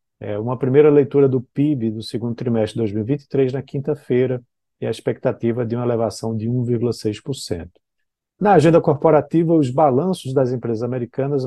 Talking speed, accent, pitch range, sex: 145 wpm, Brazilian, 115-140 Hz, male